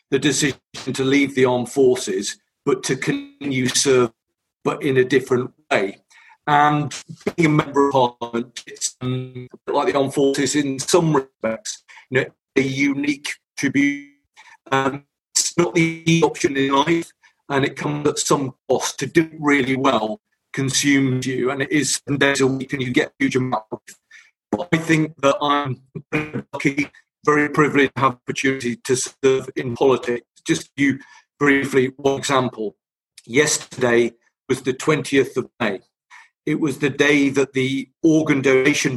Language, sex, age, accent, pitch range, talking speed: English, male, 40-59, British, 130-155 Hz, 160 wpm